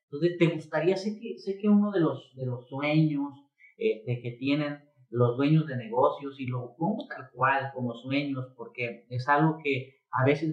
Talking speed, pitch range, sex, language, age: 195 wpm, 125-155 Hz, male, Spanish, 40-59